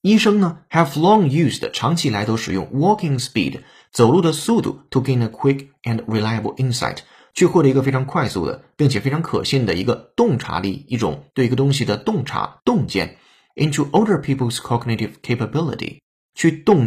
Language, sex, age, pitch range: Chinese, male, 30-49, 115-155 Hz